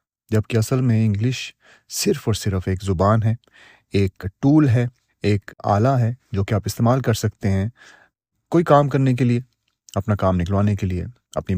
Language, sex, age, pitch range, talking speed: Urdu, male, 30-49, 100-130 Hz, 180 wpm